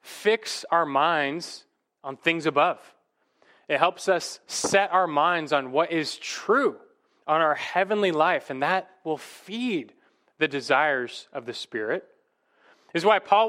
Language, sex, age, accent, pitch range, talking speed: English, male, 20-39, American, 130-185 Hz, 145 wpm